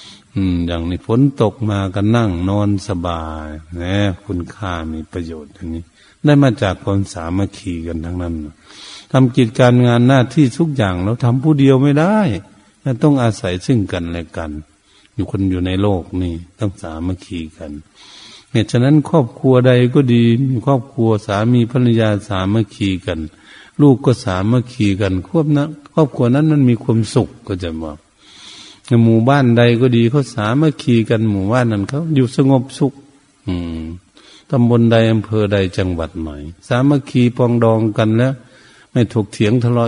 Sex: male